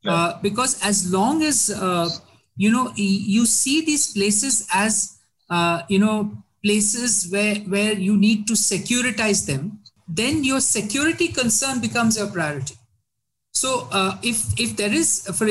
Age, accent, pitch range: 50-69, Indian, 170-220 Hz